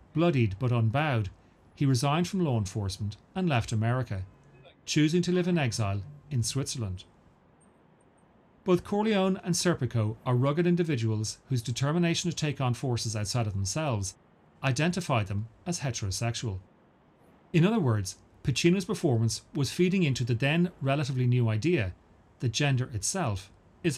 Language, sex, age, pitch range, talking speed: English, male, 40-59, 110-165 Hz, 140 wpm